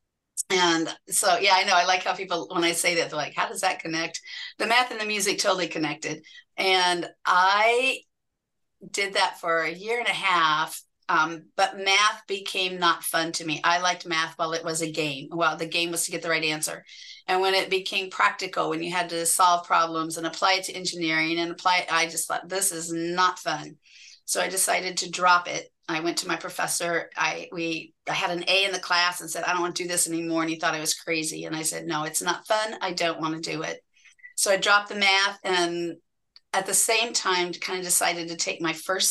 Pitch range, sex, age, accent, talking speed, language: 165-195 Hz, female, 40-59, American, 235 wpm, English